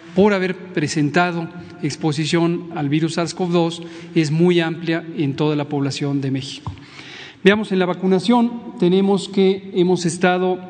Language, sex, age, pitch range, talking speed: Spanish, male, 40-59, 155-185 Hz, 135 wpm